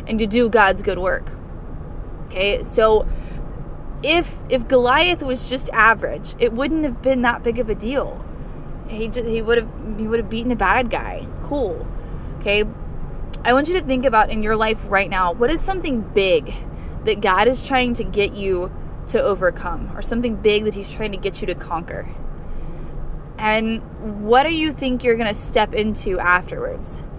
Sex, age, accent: female, 20-39, American